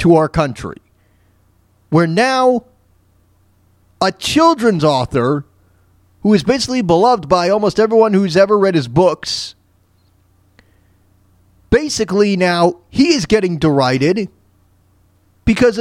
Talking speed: 105 wpm